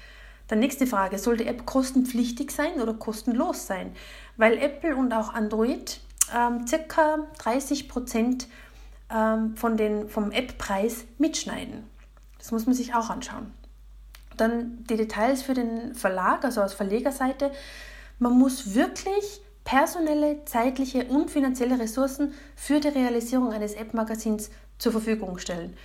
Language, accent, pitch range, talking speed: German, German, 225-270 Hz, 130 wpm